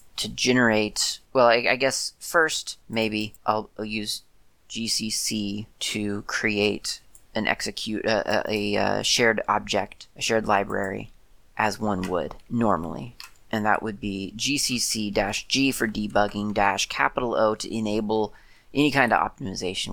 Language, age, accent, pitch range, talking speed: English, 30-49, American, 105-115 Hz, 130 wpm